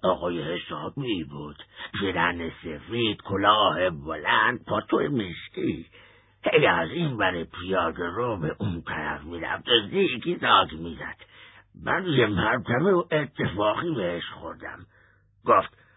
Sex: male